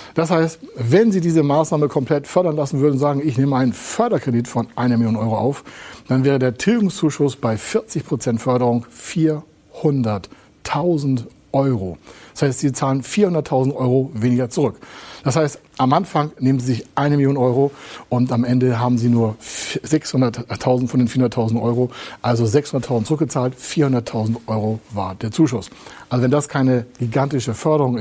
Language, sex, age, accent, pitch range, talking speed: German, male, 60-79, German, 115-135 Hz, 155 wpm